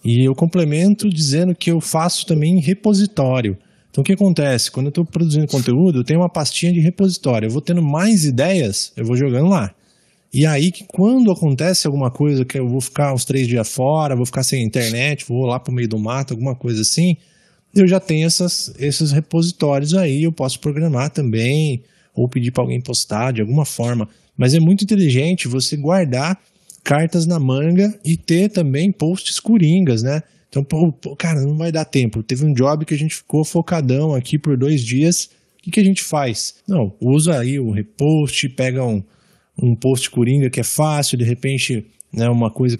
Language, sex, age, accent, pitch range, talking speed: Portuguese, male, 20-39, Brazilian, 125-170 Hz, 195 wpm